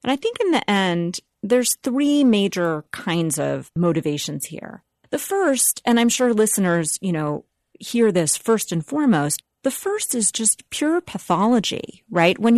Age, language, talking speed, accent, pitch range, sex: 40-59, English, 160 wpm, American, 170-250 Hz, female